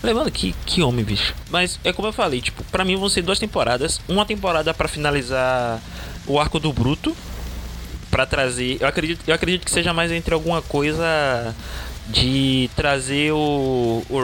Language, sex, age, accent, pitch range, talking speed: Portuguese, male, 20-39, Brazilian, 110-140 Hz, 175 wpm